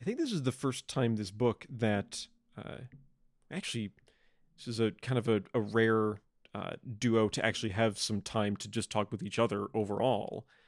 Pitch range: 110-130 Hz